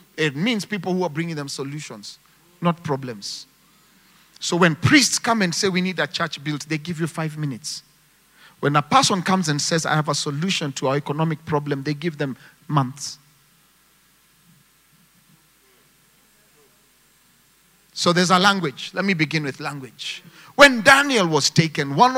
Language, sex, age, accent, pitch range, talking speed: English, male, 40-59, South African, 145-180 Hz, 155 wpm